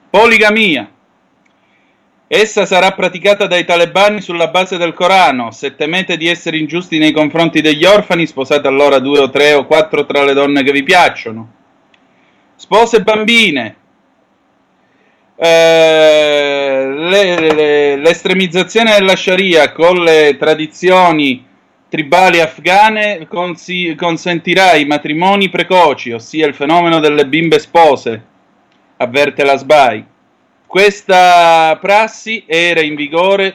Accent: native